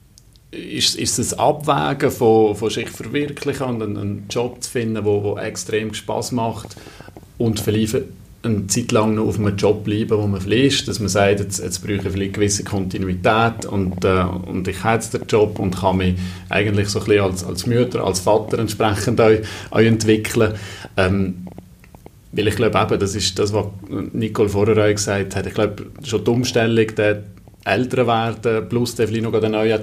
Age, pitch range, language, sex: 40-59, 100-115 Hz, German, male